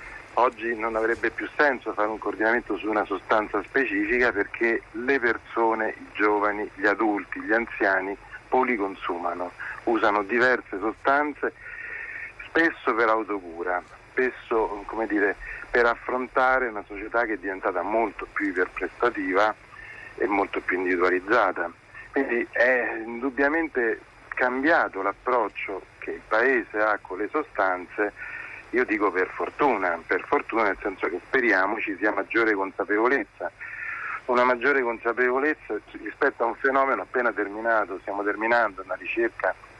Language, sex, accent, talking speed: Italian, male, native, 130 wpm